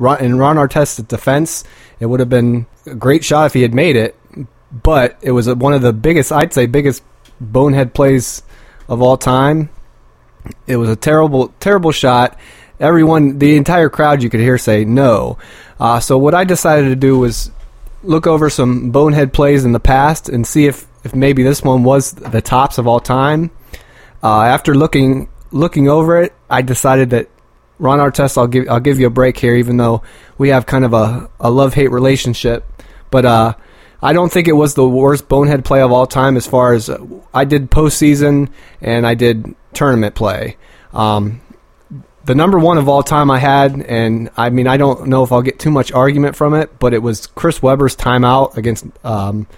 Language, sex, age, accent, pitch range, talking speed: English, male, 20-39, American, 120-145 Hz, 195 wpm